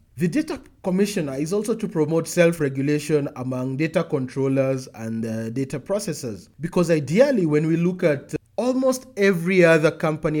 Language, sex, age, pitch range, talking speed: English, male, 30-49, 135-175 Hz, 145 wpm